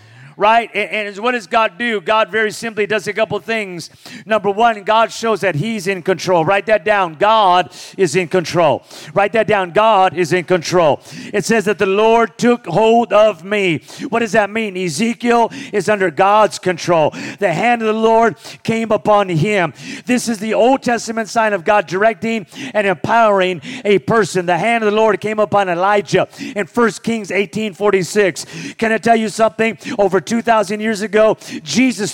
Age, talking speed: 40-59, 185 wpm